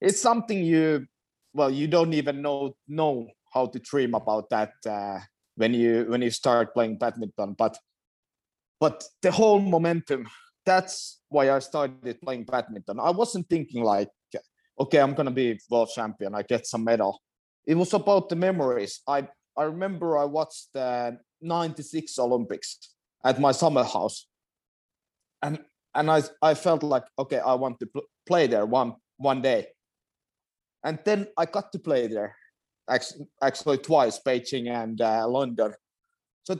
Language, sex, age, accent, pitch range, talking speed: English, male, 30-49, Finnish, 120-165 Hz, 155 wpm